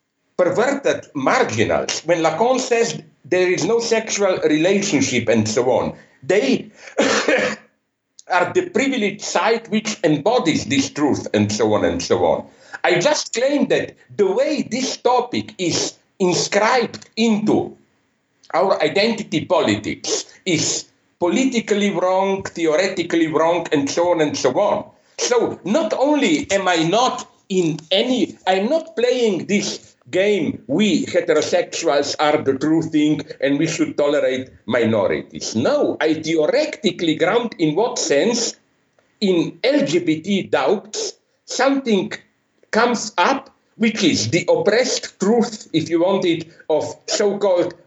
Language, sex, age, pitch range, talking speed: English, male, 60-79, 170-265 Hz, 125 wpm